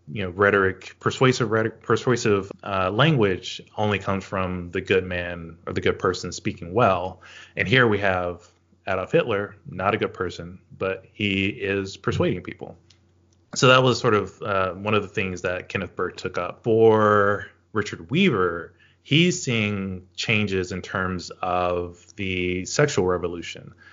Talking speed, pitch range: 155 wpm, 90-105 Hz